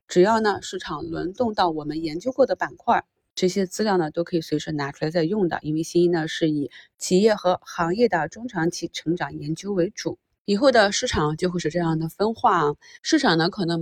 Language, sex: Chinese, female